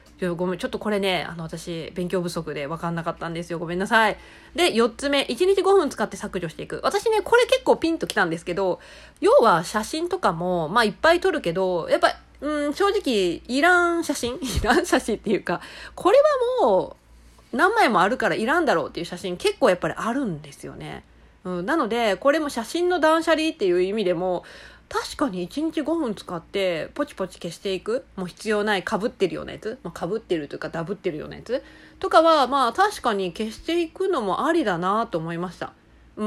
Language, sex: Japanese, female